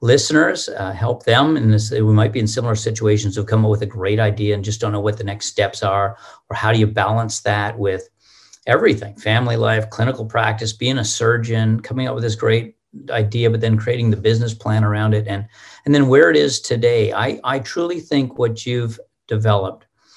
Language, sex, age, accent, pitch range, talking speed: English, male, 50-69, American, 105-115 Hz, 210 wpm